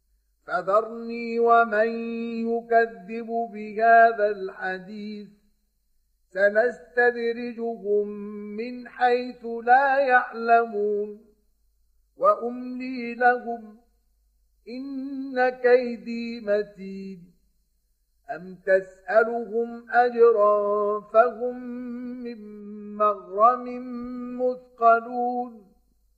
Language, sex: Arabic, male